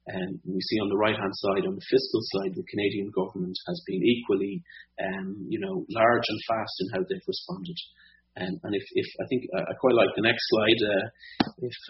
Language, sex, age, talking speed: English, male, 30-49, 205 wpm